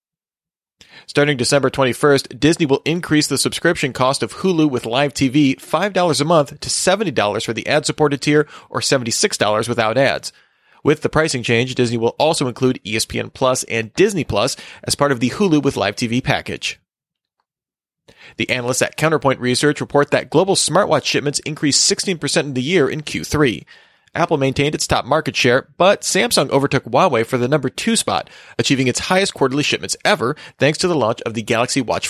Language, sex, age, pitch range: English, male, 30-49, 120-150 Hz